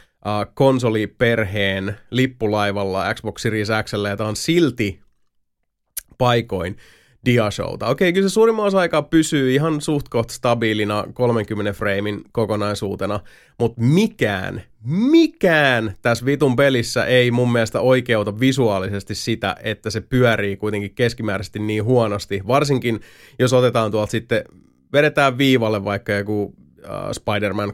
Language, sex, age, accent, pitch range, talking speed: Finnish, male, 30-49, native, 105-130 Hz, 115 wpm